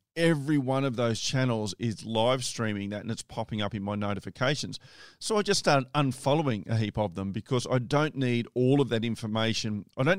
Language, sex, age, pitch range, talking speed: English, male, 40-59, 110-140 Hz, 205 wpm